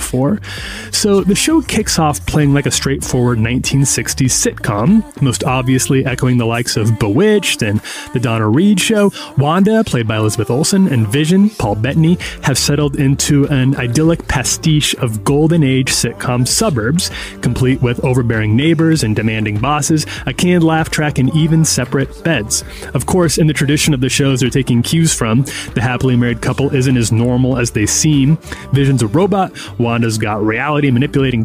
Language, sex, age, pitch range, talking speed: English, male, 30-49, 120-160 Hz, 165 wpm